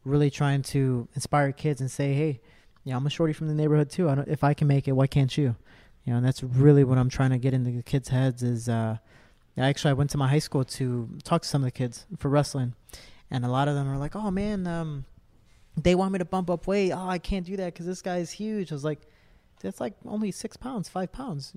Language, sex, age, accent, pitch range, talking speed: English, male, 20-39, American, 135-175 Hz, 265 wpm